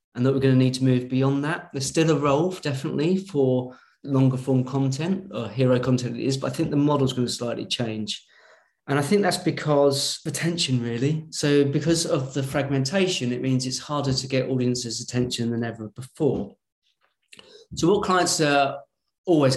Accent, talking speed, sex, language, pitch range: British, 190 wpm, male, English, 125-145 Hz